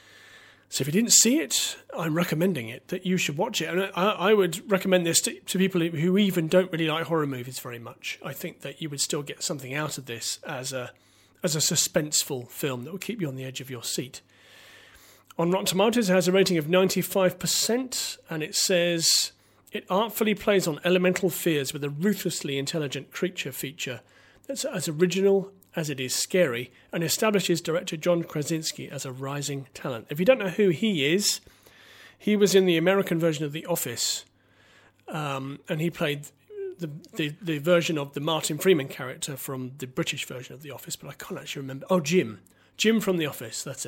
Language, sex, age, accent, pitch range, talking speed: English, male, 40-59, British, 140-185 Hz, 200 wpm